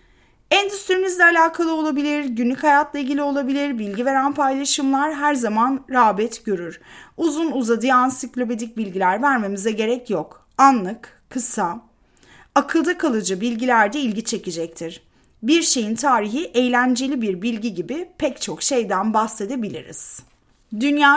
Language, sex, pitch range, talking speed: Turkish, female, 220-290 Hz, 115 wpm